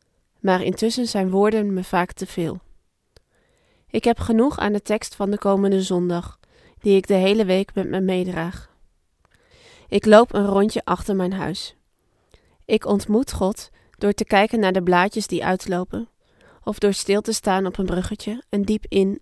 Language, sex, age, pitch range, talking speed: Dutch, female, 20-39, 185-205 Hz, 170 wpm